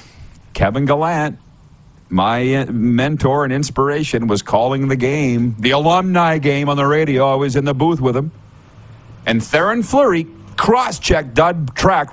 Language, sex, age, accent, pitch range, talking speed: English, male, 50-69, American, 130-175 Hz, 145 wpm